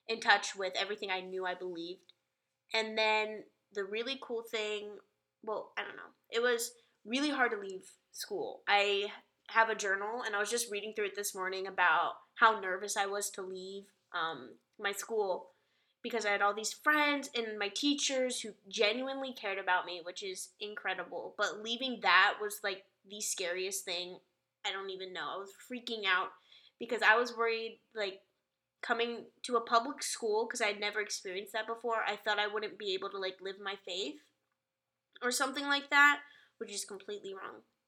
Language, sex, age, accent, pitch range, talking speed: English, female, 10-29, American, 195-235 Hz, 185 wpm